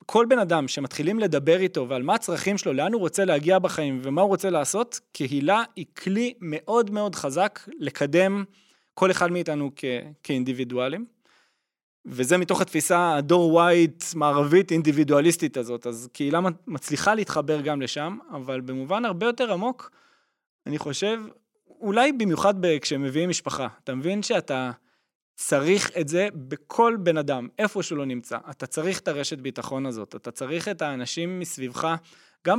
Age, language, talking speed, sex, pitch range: 20-39, Hebrew, 150 wpm, male, 140-195 Hz